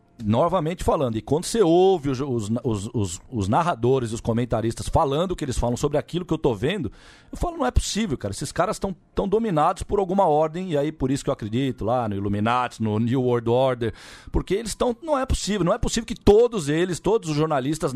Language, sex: Portuguese, male